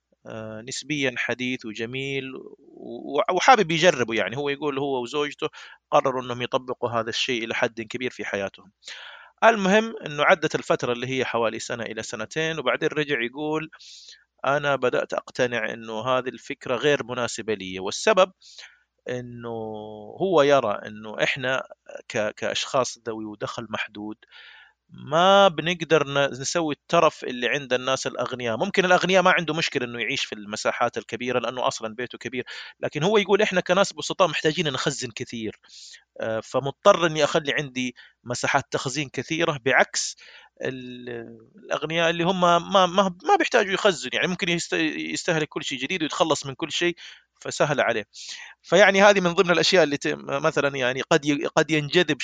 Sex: male